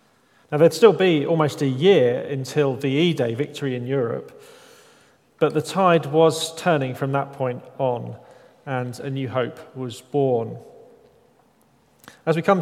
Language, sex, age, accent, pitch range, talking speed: English, male, 40-59, British, 125-160 Hz, 145 wpm